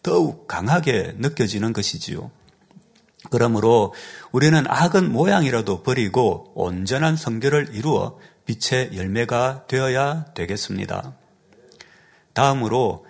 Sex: male